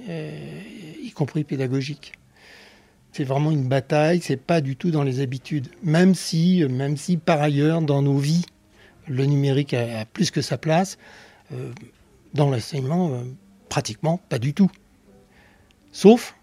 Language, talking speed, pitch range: French, 140 wpm, 135-170 Hz